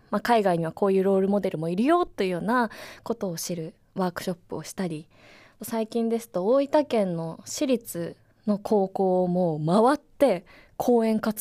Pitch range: 180-265 Hz